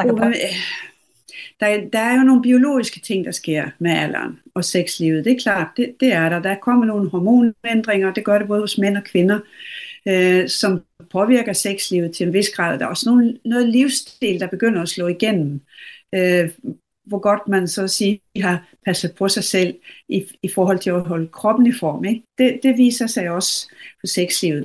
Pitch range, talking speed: 180-245 Hz, 190 wpm